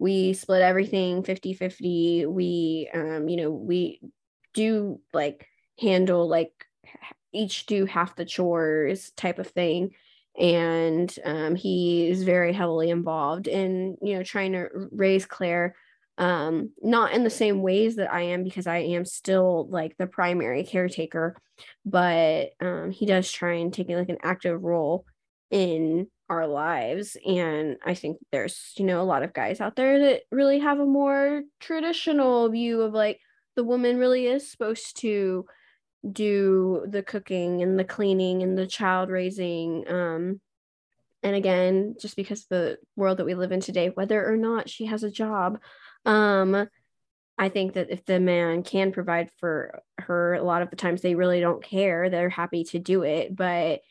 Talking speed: 165 wpm